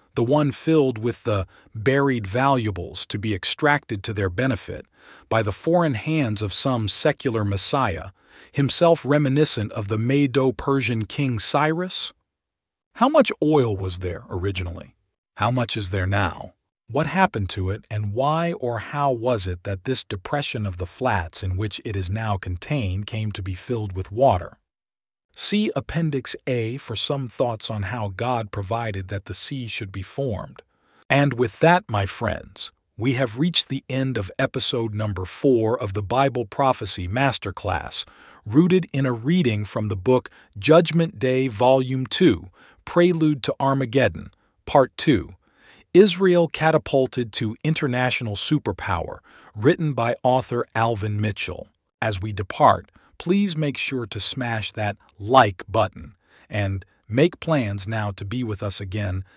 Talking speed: 150 wpm